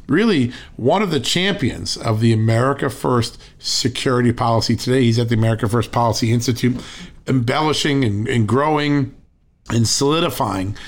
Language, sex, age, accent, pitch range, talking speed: English, male, 50-69, American, 105-130 Hz, 140 wpm